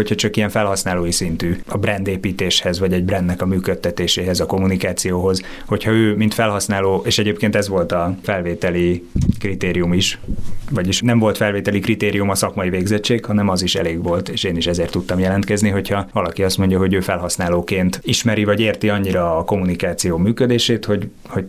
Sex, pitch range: male, 90-105 Hz